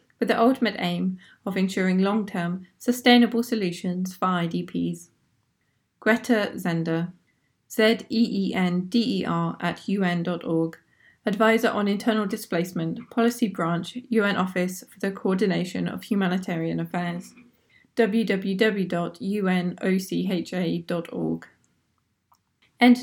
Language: English